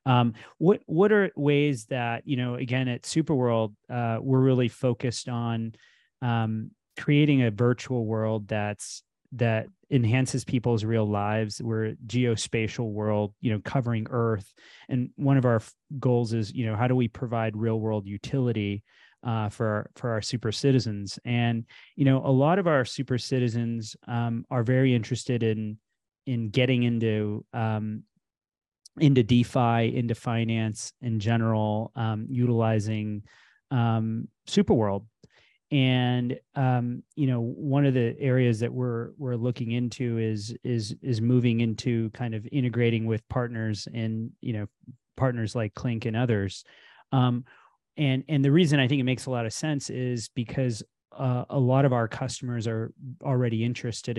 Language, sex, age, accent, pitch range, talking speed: English, male, 30-49, American, 110-130 Hz, 155 wpm